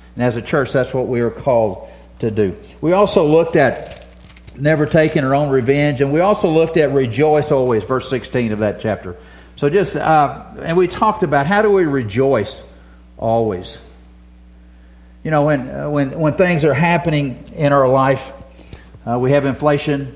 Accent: American